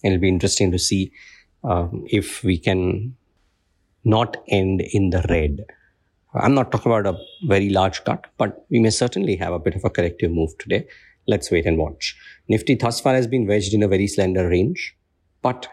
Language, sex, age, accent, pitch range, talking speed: English, male, 50-69, Indian, 90-105 Hz, 190 wpm